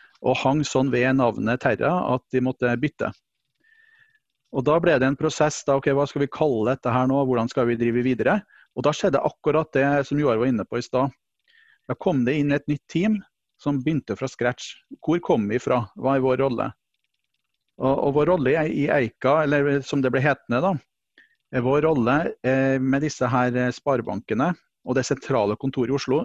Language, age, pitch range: English, 40-59, 125-145 Hz